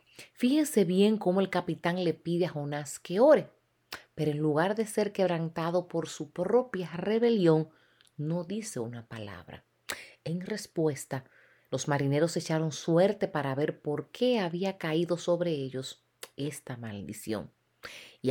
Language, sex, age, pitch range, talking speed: Spanish, female, 30-49, 145-210 Hz, 140 wpm